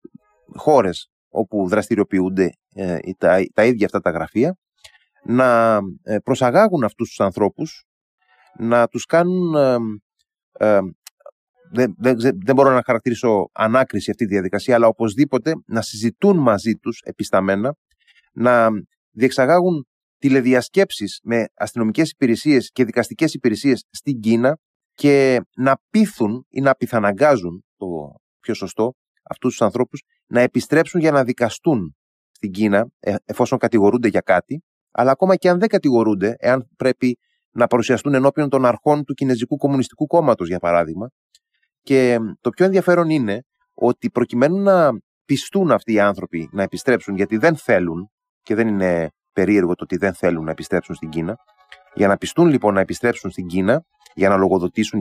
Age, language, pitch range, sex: 30-49, Greek, 105-145 Hz, male